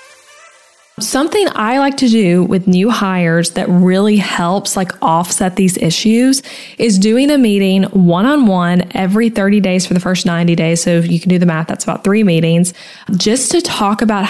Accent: American